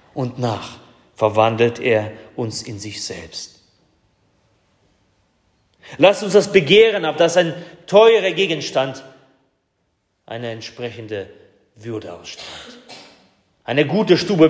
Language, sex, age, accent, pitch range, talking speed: German, male, 40-59, German, 100-150 Hz, 100 wpm